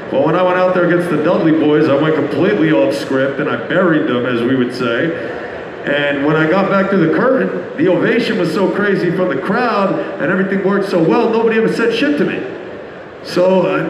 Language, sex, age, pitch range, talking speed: English, male, 50-69, 155-185 Hz, 225 wpm